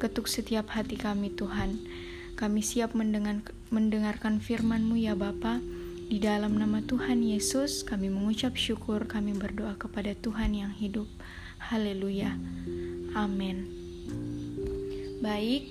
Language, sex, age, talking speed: Indonesian, female, 10-29, 105 wpm